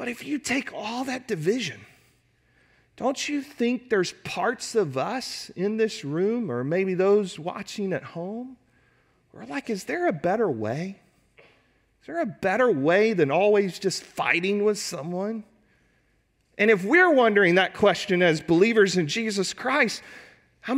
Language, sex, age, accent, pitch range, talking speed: English, male, 40-59, American, 155-220 Hz, 155 wpm